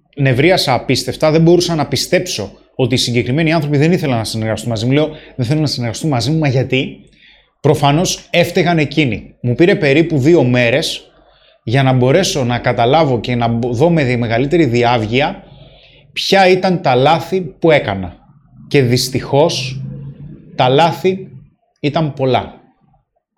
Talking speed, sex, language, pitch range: 145 wpm, male, Greek, 125-160 Hz